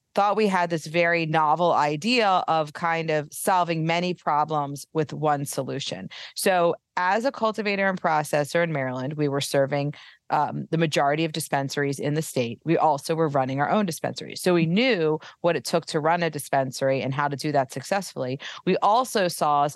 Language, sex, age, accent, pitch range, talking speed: English, female, 30-49, American, 150-185 Hz, 190 wpm